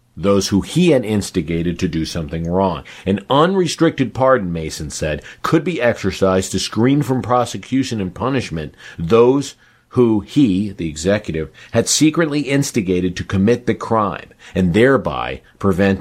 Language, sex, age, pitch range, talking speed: English, male, 50-69, 85-120 Hz, 140 wpm